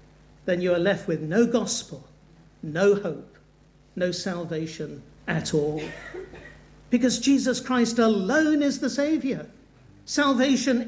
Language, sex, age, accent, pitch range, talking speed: English, male, 50-69, British, 195-265 Hz, 115 wpm